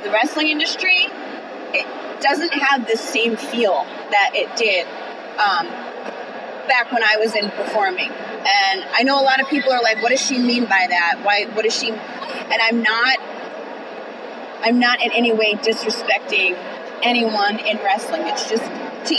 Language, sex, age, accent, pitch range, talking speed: English, female, 30-49, American, 210-265 Hz, 165 wpm